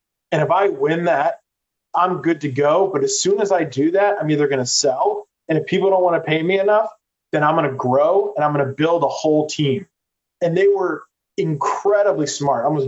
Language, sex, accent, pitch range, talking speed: English, male, American, 140-185 Hz, 230 wpm